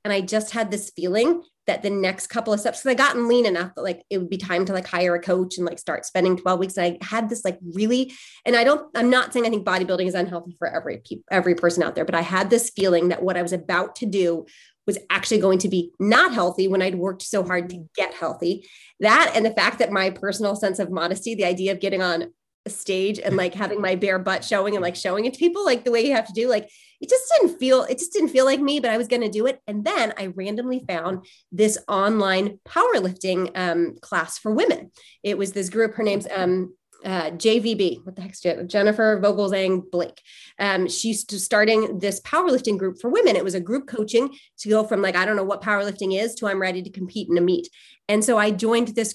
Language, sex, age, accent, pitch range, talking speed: English, female, 30-49, American, 185-225 Hz, 250 wpm